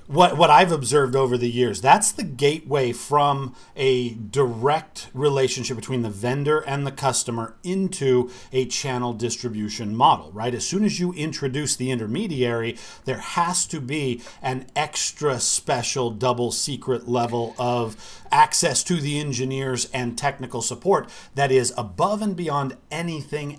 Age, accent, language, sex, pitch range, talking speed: 40-59, American, English, male, 120-145 Hz, 145 wpm